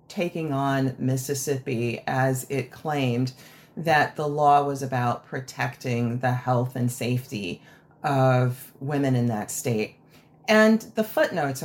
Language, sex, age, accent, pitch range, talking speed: English, female, 40-59, American, 125-145 Hz, 125 wpm